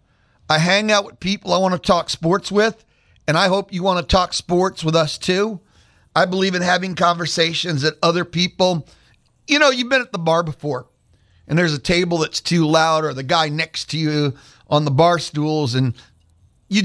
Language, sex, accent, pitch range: English, male, American, 130-180 Hz